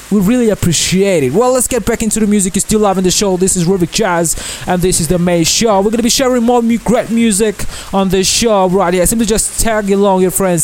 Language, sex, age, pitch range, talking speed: English, male, 20-39, 165-210 Hz, 260 wpm